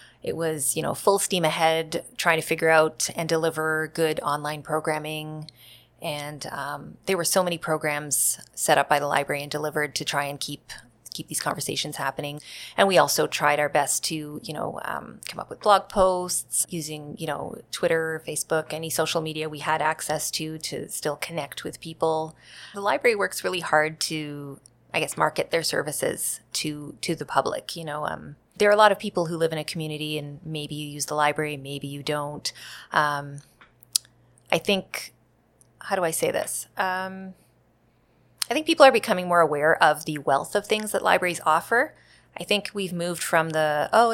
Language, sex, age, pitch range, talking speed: English, female, 20-39, 150-170 Hz, 190 wpm